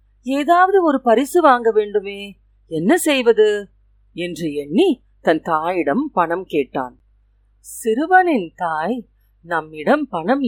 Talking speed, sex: 95 wpm, female